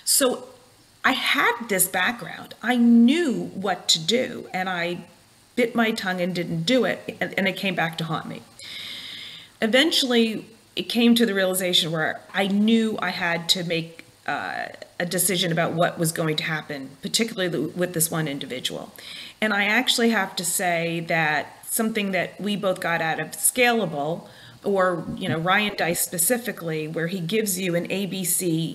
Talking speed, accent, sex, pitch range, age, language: 165 wpm, American, female, 165-205 Hz, 40-59, English